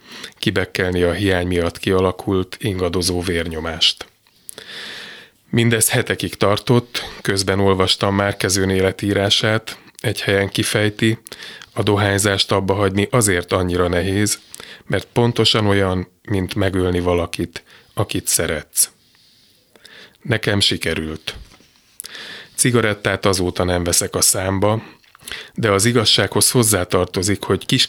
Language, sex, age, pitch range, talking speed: Hungarian, male, 30-49, 90-105 Hz, 100 wpm